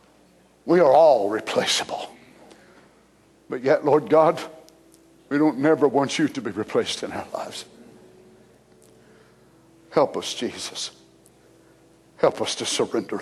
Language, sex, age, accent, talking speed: English, male, 60-79, American, 120 wpm